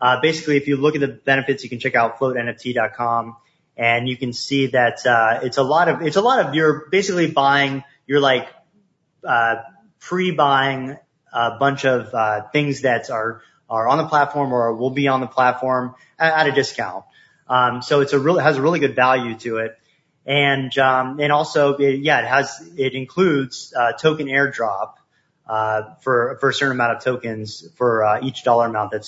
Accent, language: American, English